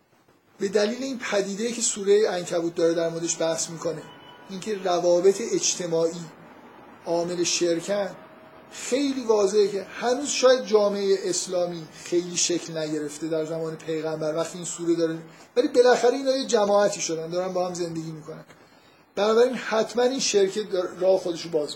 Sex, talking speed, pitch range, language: male, 145 wpm, 170-210 Hz, Persian